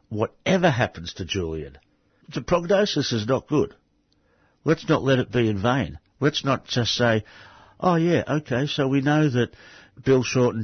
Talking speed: 165 wpm